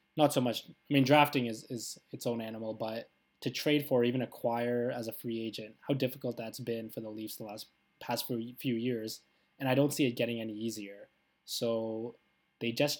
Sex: male